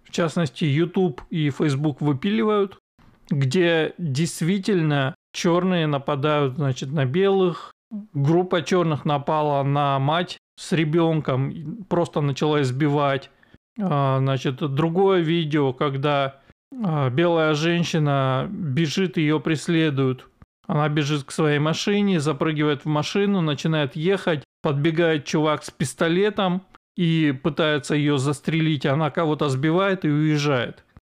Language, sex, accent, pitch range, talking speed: Russian, male, native, 145-180 Hz, 105 wpm